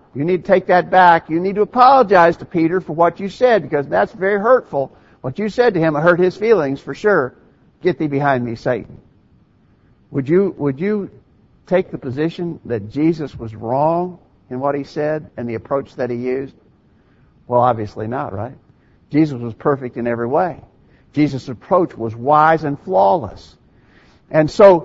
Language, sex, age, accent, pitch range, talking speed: English, male, 60-79, American, 130-180 Hz, 180 wpm